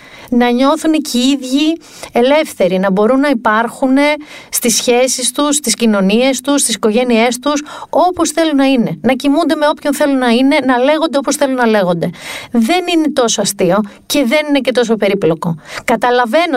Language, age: Greek, 40-59